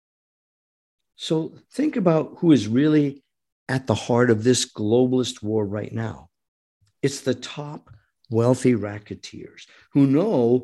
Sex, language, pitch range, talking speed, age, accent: male, English, 115-160 Hz, 125 wpm, 50-69, American